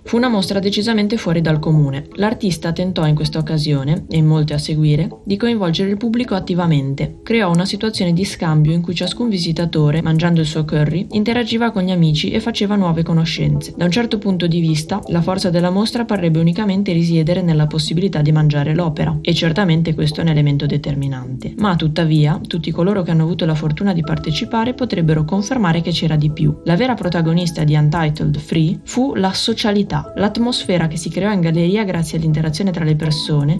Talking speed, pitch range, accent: 190 wpm, 160-200 Hz, native